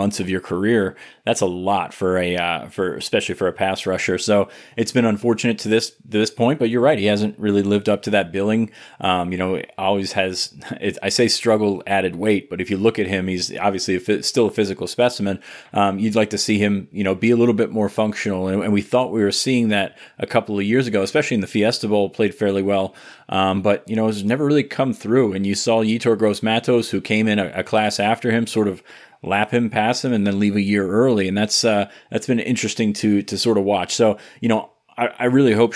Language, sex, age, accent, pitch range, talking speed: English, male, 30-49, American, 100-110 Hz, 240 wpm